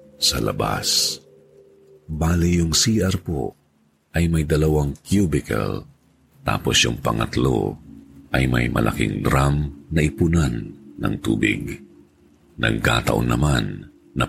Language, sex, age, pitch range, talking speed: Filipino, male, 50-69, 70-85 Hz, 100 wpm